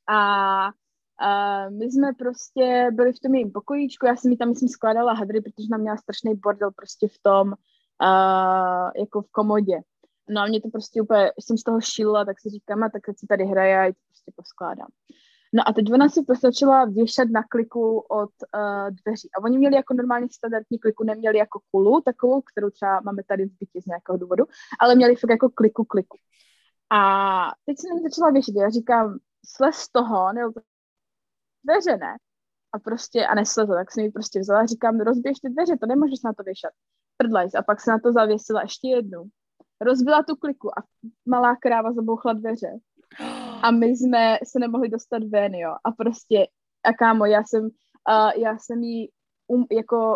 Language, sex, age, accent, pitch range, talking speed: Czech, female, 20-39, native, 210-245 Hz, 185 wpm